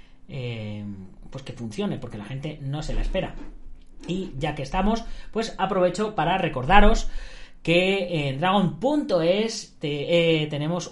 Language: Spanish